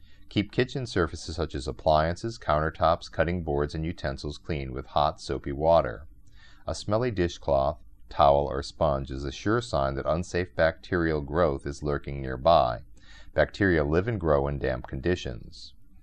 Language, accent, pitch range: English, American, 70-90 Hz